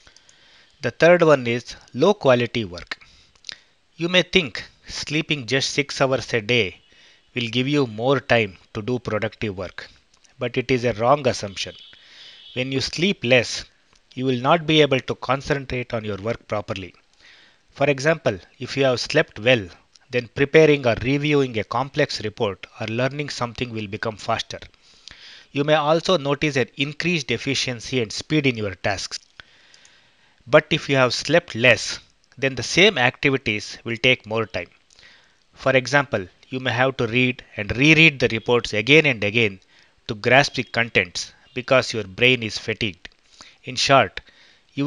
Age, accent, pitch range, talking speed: 20-39, Indian, 110-145 Hz, 160 wpm